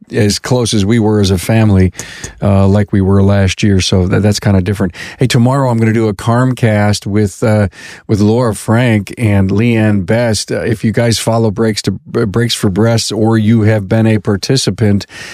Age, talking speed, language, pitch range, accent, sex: 50-69, 205 wpm, English, 105-125 Hz, American, male